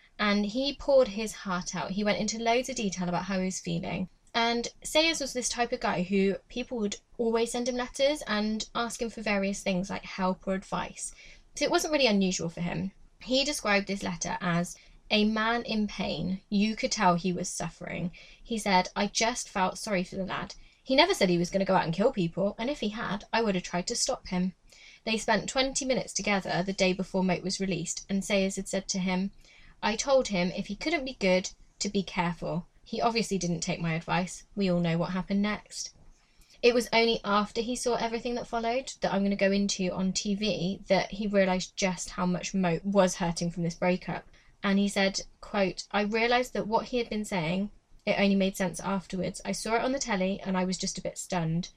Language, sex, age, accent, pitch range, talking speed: English, female, 20-39, British, 180-225 Hz, 225 wpm